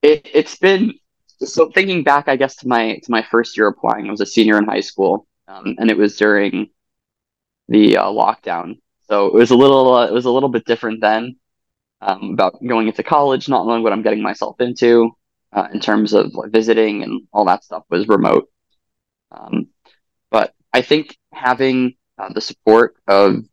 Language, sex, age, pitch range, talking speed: English, male, 20-39, 105-130 Hz, 190 wpm